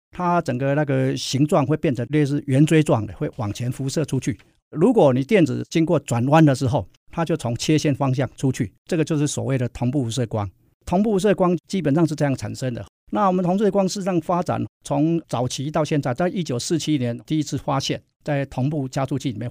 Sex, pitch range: male, 120-150 Hz